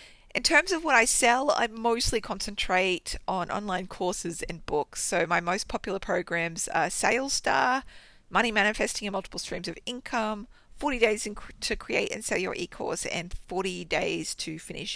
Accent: Australian